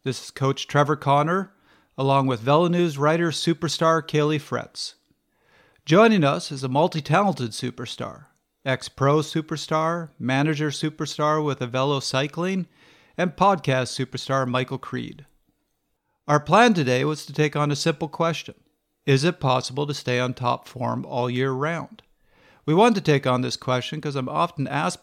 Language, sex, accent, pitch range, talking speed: English, male, American, 125-165 Hz, 150 wpm